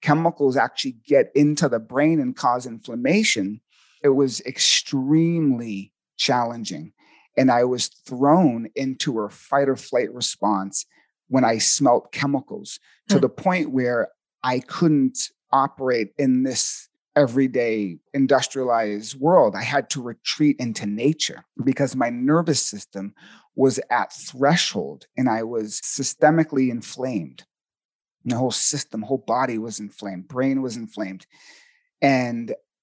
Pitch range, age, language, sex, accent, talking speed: 115-145 Hz, 40-59, English, male, American, 125 wpm